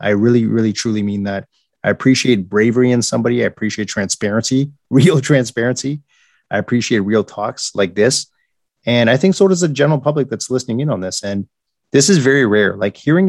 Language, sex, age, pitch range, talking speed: English, male, 30-49, 105-130 Hz, 190 wpm